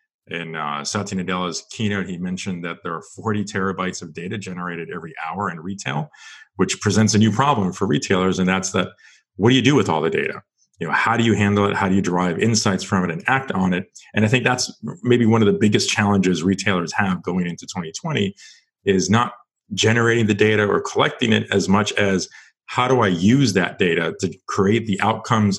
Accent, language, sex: American, English, male